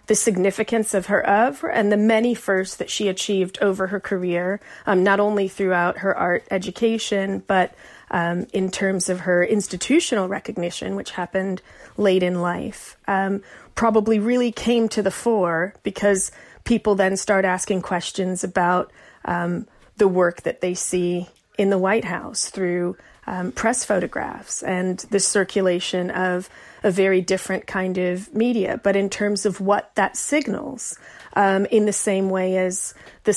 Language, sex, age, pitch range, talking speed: English, female, 30-49, 185-210 Hz, 155 wpm